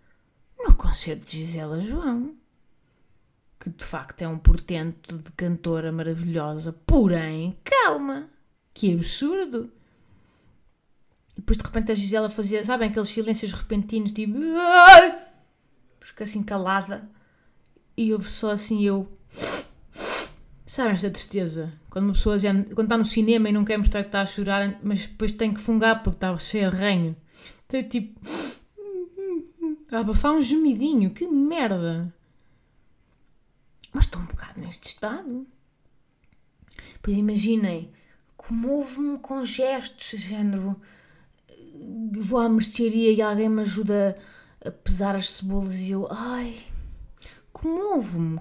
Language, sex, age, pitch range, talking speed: Portuguese, female, 20-39, 185-245 Hz, 130 wpm